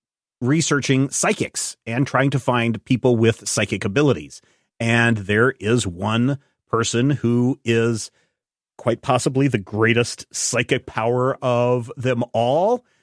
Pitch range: 105-135 Hz